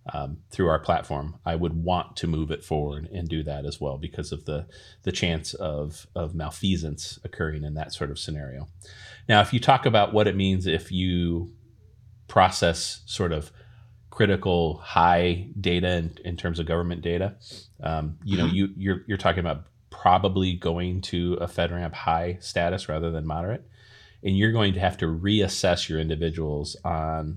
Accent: American